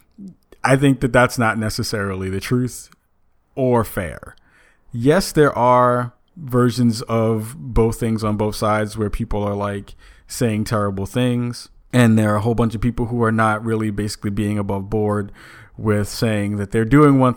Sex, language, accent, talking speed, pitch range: male, English, American, 170 wpm, 105-125 Hz